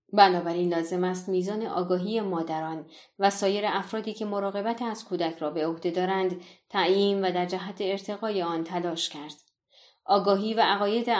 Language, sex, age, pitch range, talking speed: Persian, female, 30-49, 170-205 Hz, 150 wpm